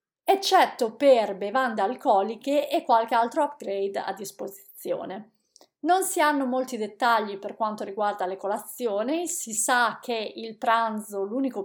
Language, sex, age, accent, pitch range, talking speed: Italian, female, 30-49, native, 215-280 Hz, 135 wpm